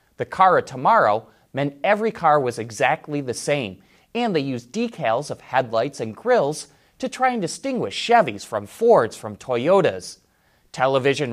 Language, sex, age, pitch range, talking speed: English, male, 30-49, 115-185 Hz, 155 wpm